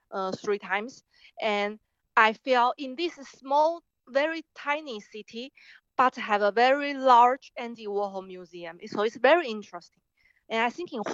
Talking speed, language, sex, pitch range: 150 wpm, English, female, 205-245 Hz